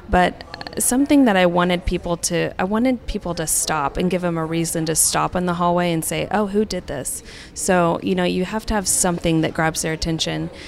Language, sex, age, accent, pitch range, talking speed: English, female, 20-39, American, 160-185 Hz, 225 wpm